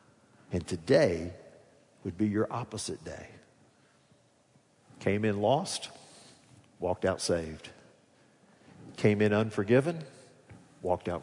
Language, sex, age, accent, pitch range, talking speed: English, male, 50-69, American, 105-130 Hz, 95 wpm